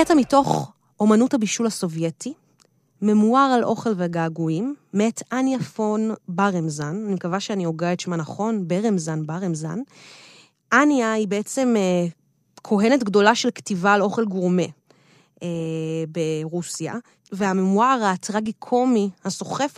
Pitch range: 185-235 Hz